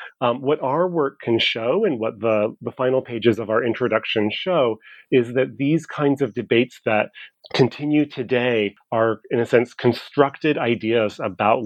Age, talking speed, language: 30-49, 165 wpm, English